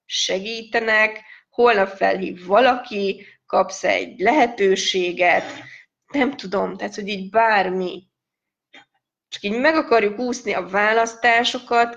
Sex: female